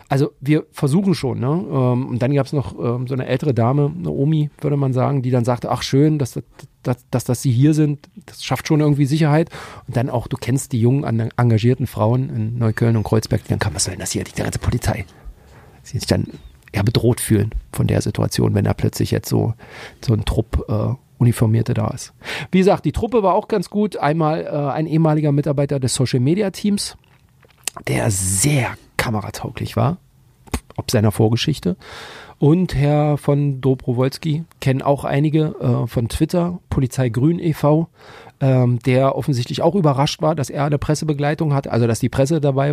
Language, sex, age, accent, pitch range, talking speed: German, male, 40-59, German, 120-150 Hz, 185 wpm